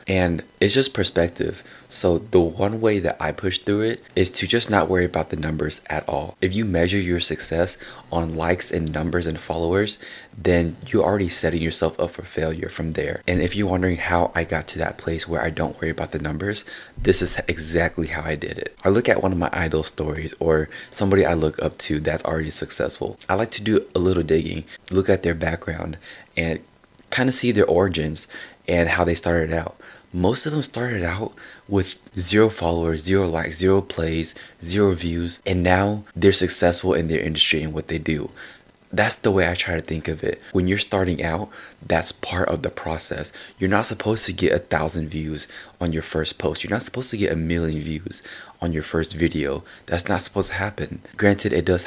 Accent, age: American, 20-39